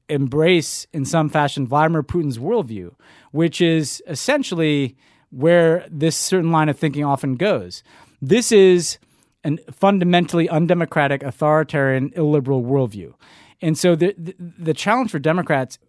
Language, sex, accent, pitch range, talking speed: English, male, American, 140-170 Hz, 125 wpm